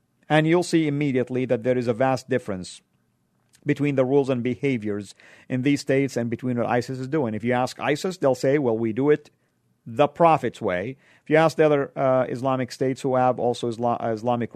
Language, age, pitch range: English, 50-69, 120-145 Hz